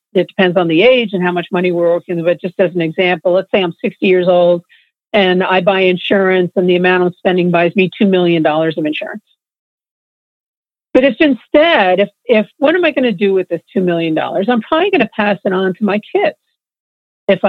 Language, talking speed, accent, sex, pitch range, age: English, 215 wpm, American, female, 185-245 Hz, 50-69